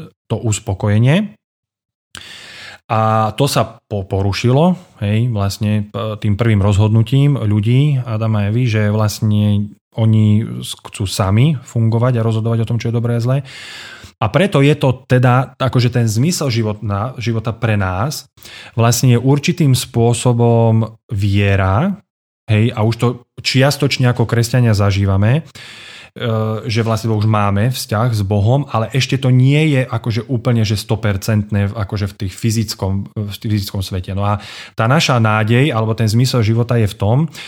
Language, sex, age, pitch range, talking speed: Slovak, male, 30-49, 105-125 Hz, 140 wpm